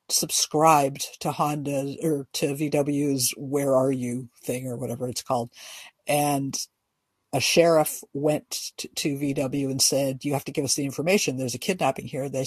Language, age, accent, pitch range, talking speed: English, 50-69, American, 135-165 Hz, 170 wpm